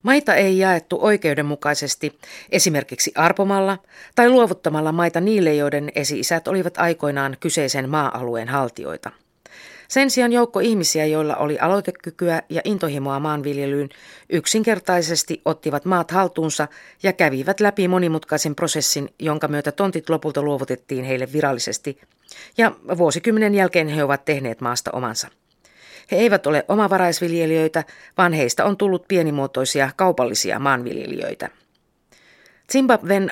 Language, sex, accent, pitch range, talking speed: Finnish, female, native, 145-185 Hz, 115 wpm